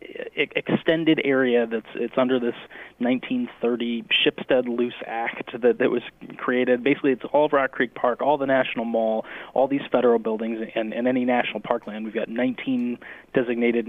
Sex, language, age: male, English, 20-39